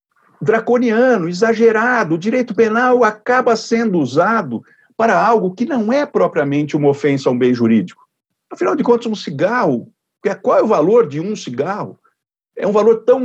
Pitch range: 145-220 Hz